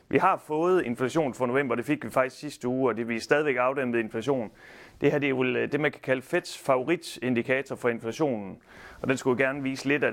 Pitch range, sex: 115-135 Hz, male